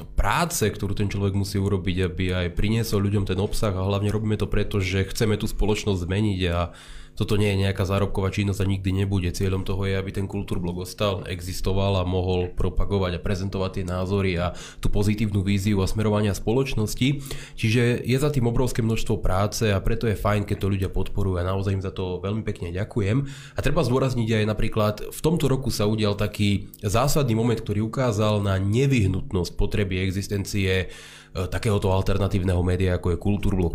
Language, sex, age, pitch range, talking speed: Slovak, male, 20-39, 95-120 Hz, 180 wpm